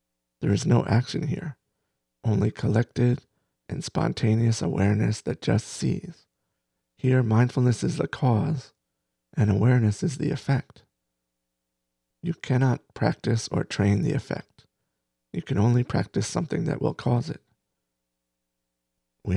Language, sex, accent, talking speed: English, male, American, 125 wpm